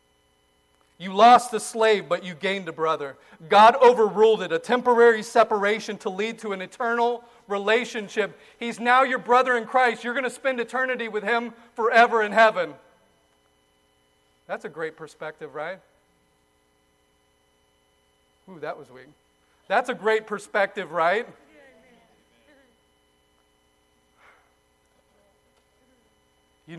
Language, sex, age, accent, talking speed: English, male, 40-59, American, 115 wpm